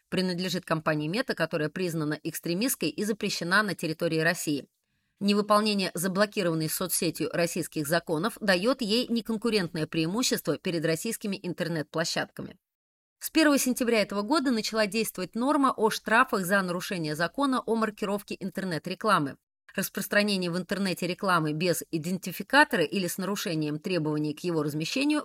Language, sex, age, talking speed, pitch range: Russian, female, 30-49, 125 wpm, 165-225 Hz